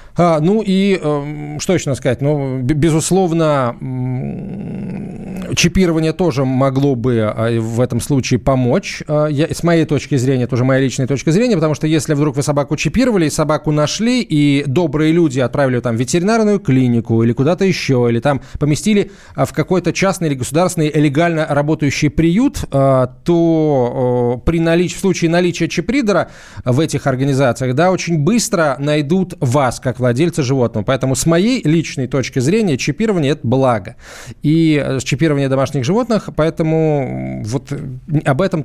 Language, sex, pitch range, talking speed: Russian, male, 135-175 Hz, 160 wpm